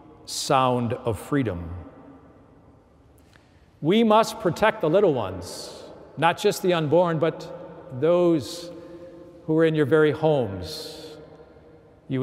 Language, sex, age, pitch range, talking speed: English, male, 50-69, 135-170 Hz, 110 wpm